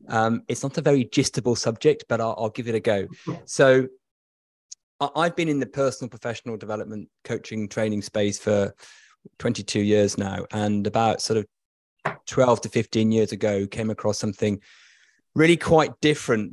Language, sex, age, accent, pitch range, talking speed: English, male, 30-49, British, 105-130 Hz, 160 wpm